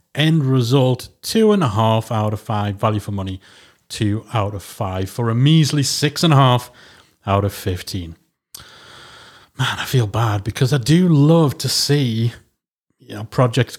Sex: male